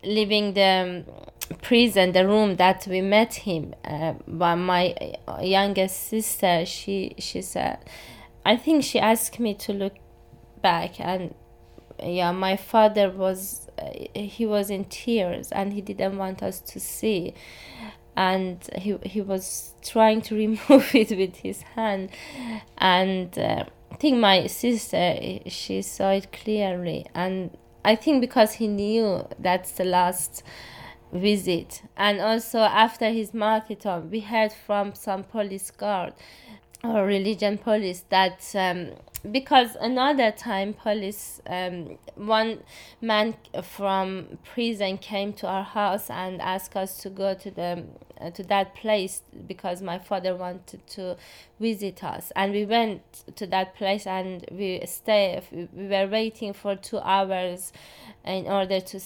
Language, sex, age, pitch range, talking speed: English, female, 20-39, 185-215 Hz, 140 wpm